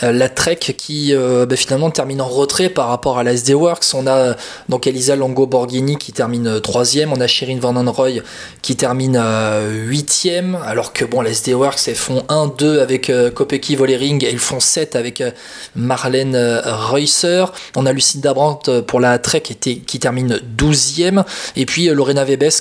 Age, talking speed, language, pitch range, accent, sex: 20-39, 185 wpm, French, 125-150 Hz, French, male